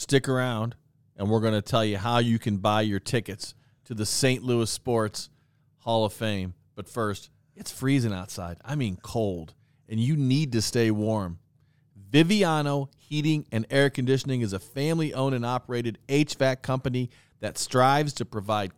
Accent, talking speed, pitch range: American, 165 wpm, 110-140 Hz